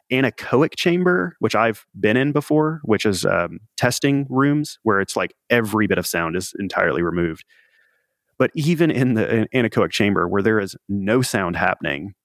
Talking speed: 165 wpm